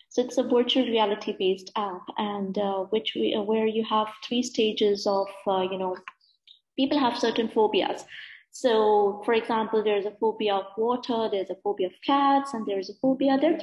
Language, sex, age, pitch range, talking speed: English, female, 30-49, 210-260 Hz, 185 wpm